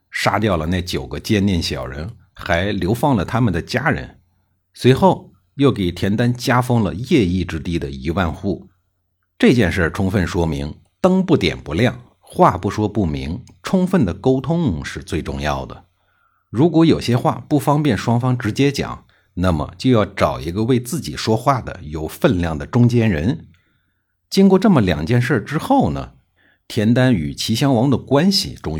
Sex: male